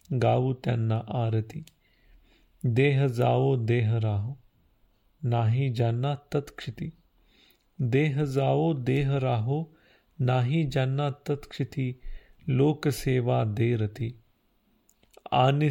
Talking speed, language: 75 wpm, Marathi